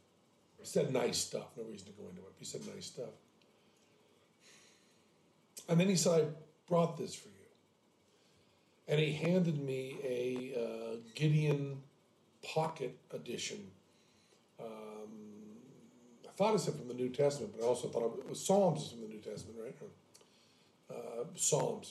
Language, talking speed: English, 150 wpm